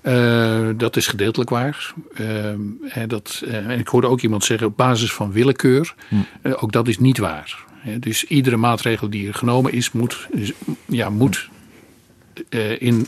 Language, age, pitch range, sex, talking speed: Dutch, 50-69, 105-130 Hz, male, 170 wpm